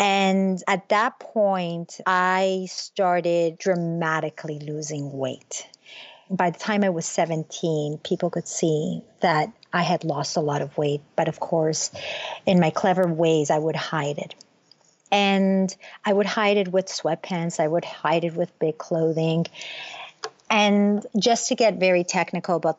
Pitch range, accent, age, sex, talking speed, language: 160-190 Hz, American, 50-69, female, 155 wpm, English